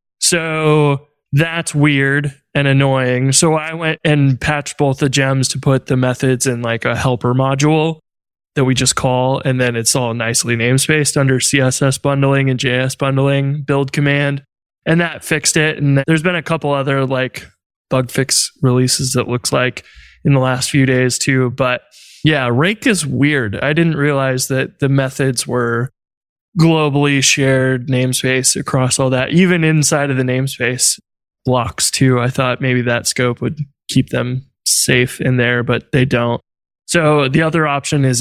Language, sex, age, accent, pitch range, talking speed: English, male, 20-39, American, 130-150 Hz, 170 wpm